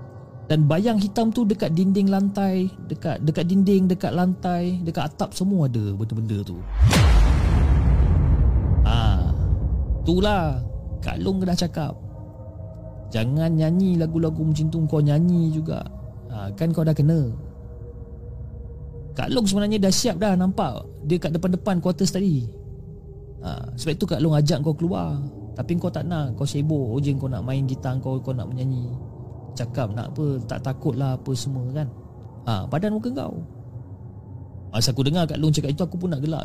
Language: Malay